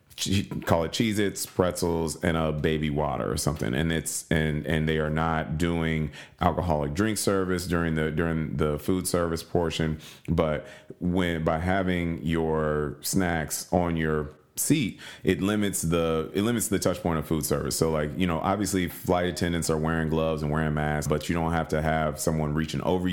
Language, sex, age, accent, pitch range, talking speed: English, male, 30-49, American, 75-90 Hz, 185 wpm